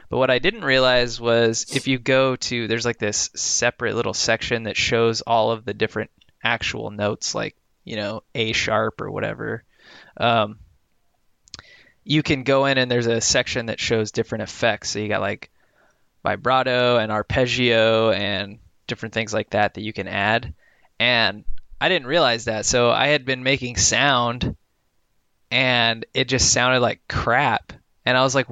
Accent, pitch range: American, 110-130 Hz